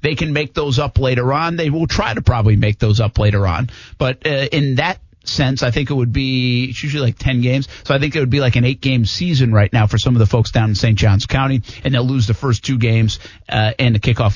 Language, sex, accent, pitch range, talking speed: English, male, American, 110-130 Hz, 270 wpm